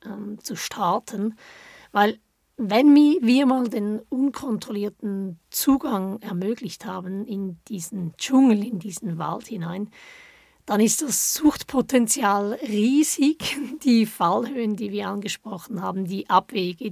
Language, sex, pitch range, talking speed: German, female, 200-250 Hz, 110 wpm